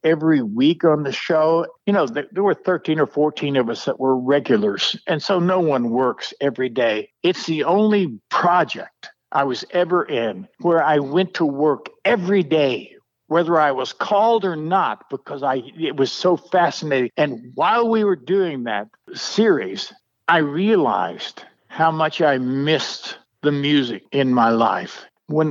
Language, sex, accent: English, male, American